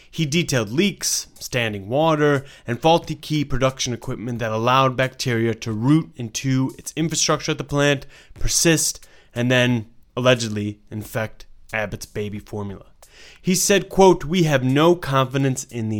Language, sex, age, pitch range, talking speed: English, male, 30-49, 115-145 Hz, 145 wpm